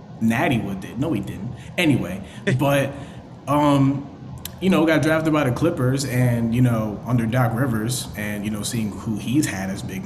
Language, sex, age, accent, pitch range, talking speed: English, male, 30-49, American, 120-175 Hz, 180 wpm